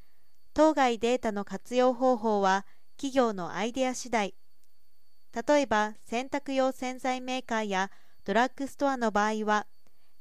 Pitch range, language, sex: 215-265 Hz, Japanese, female